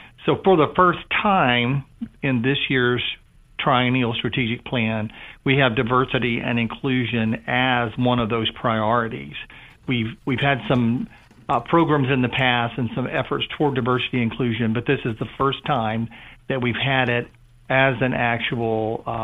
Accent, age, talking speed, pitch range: American, 50-69, 160 wpm, 120-135 Hz